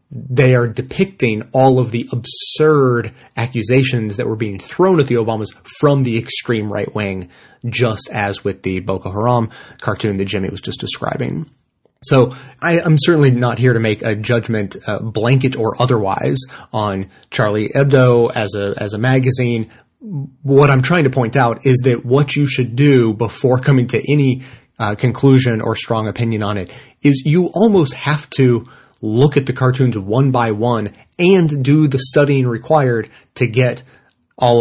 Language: English